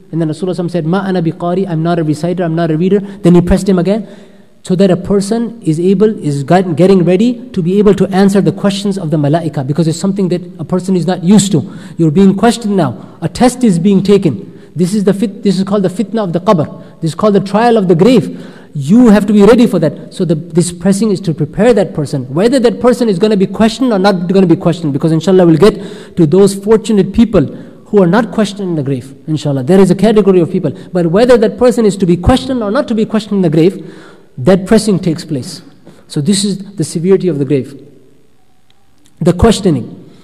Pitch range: 175-210 Hz